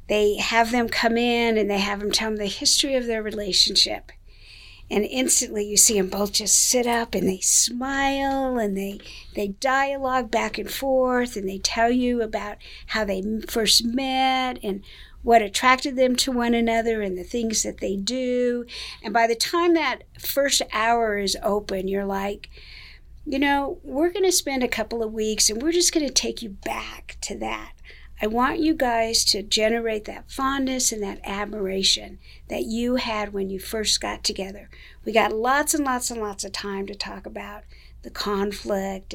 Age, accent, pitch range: 50-69, American, 200-250 Hz